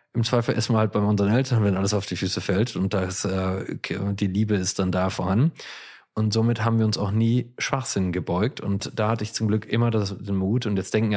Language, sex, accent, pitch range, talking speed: German, male, German, 95-110 Hz, 220 wpm